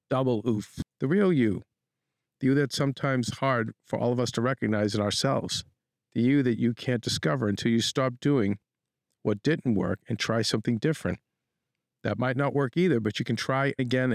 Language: English